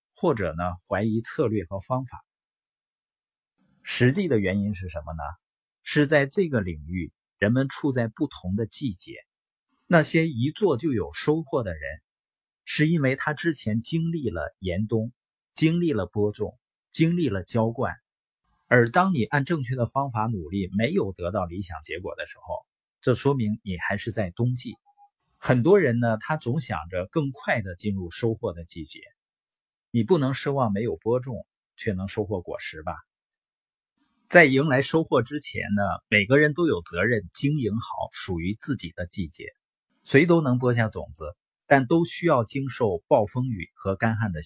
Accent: native